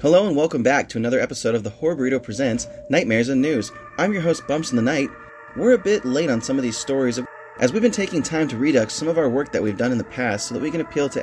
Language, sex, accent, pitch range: English, male, American, 125-170 Hz